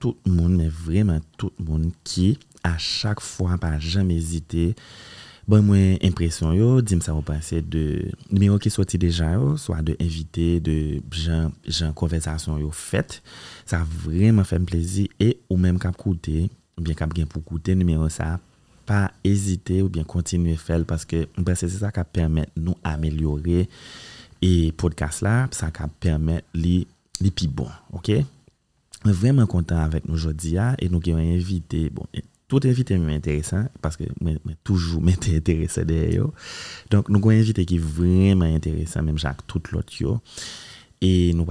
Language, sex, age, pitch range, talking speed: French, male, 30-49, 80-95 Hz, 160 wpm